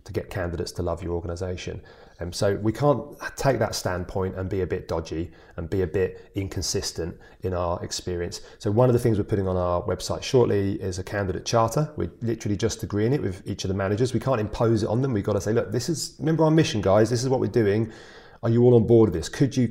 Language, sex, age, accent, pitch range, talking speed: English, male, 30-49, British, 95-115 Hz, 255 wpm